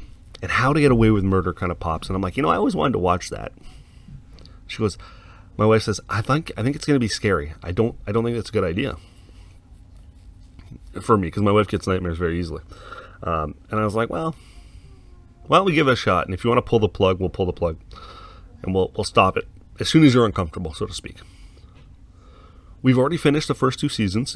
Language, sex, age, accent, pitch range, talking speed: English, male, 30-49, American, 90-120 Hz, 240 wpm